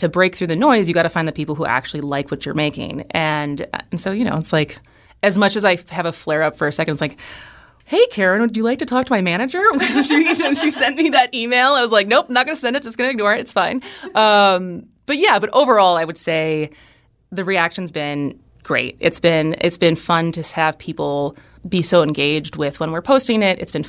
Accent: American